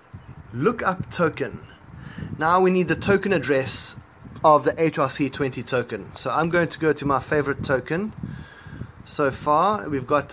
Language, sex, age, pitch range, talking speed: English, male, 30-49, 135-170 Hz, 150 wpm